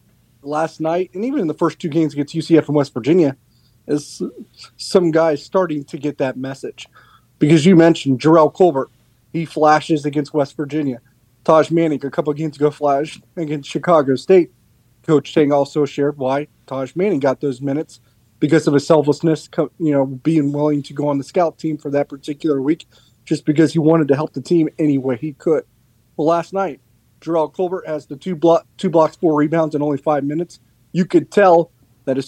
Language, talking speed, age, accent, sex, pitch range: English, 190 wpm, 30-49, American, male, 140-170 Hz